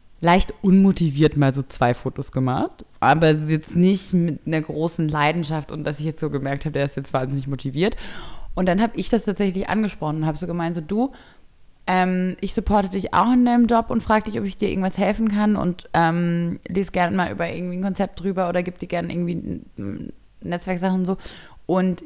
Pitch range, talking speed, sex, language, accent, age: 160-205 Hz, 205 wpm, female, German, German, 20-39